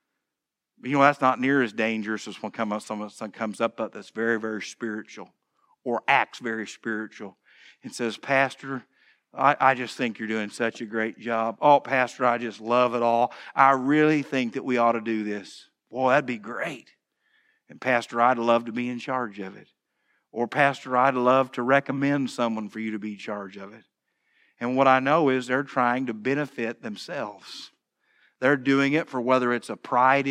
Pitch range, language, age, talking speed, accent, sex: 115-140 Hz, English, 50-69, 190 wpm, American, male